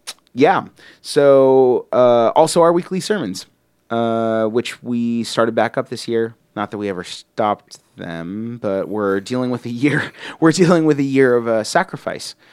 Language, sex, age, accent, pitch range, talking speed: English, male, 30-49, American, 105-125 Hz, 170 wpm